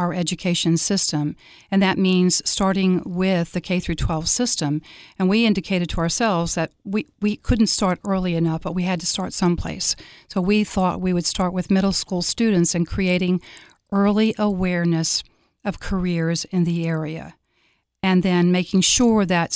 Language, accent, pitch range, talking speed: English, American, 170-195 Hz, 170 wpm